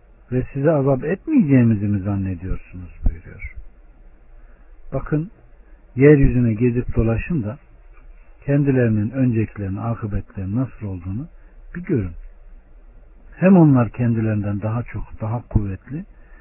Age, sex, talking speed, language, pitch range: 60-79, male, 95 wpm, Turkish, 95-135 Hz